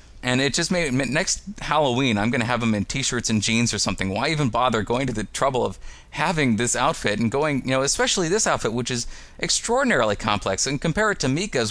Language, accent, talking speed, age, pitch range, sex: English, American, 225 wpm, 30-49, 100-145 Hz, male